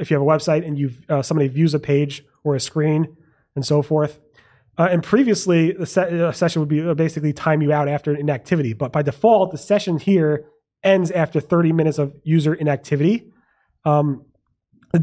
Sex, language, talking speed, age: male, English, 190 wpm, 30-49